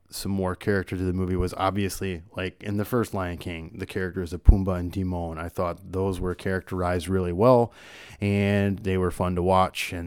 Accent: American